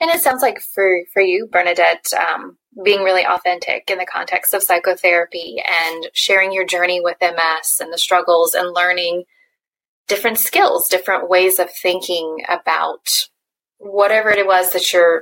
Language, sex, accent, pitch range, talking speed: English, female, American, 175-205 Hz, 160 wpm